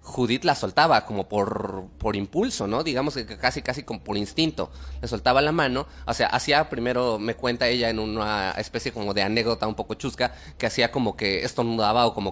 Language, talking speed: Spanish, 205 wpm